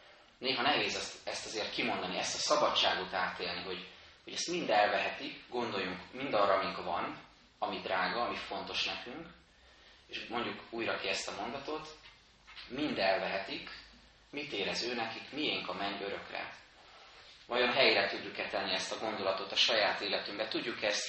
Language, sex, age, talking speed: Hungarian, male, 30-49, 150 wpm